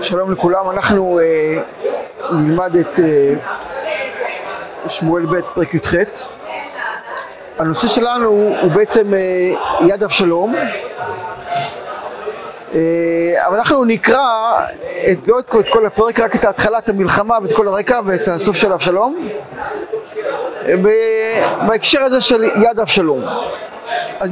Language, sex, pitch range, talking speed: Hebrew, male, 210-275 Hz, 110 wpm